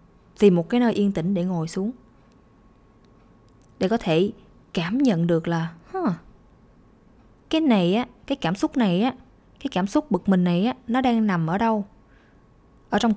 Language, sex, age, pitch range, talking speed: Vietnamese, female, 20-39, 180-245 Hz, 175 wpm